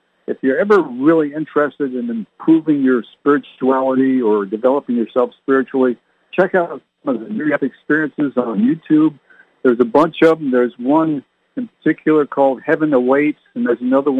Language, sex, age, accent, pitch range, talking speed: English, male, 60-79, American, 125-160 Hz, 160 wpm